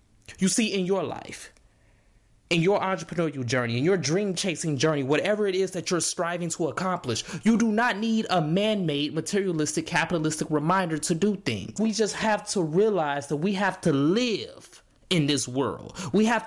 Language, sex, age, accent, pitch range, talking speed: English, male, 20-39, American, 165-220 Hz, 180 wpm